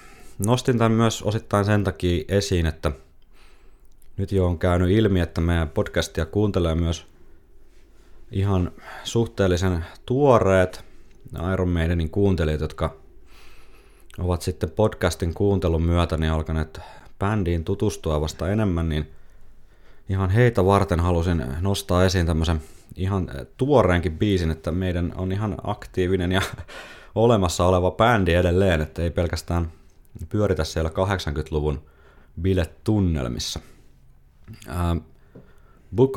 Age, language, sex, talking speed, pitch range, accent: 30-49, Finnish, male, 105 wpm, 80-95 Hz, native